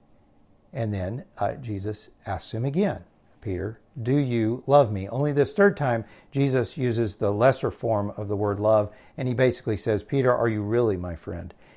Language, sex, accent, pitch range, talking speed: English, male, American, 100-130 Hz, 180 wpm